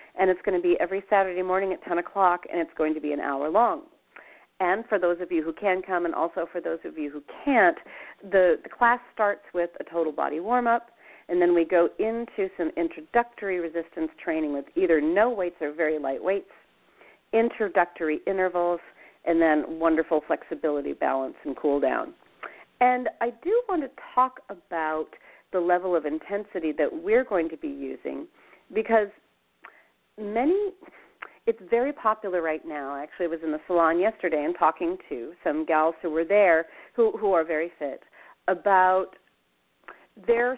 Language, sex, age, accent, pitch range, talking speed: English, female, 40-59, American, 160-225 Hz, 170 wpm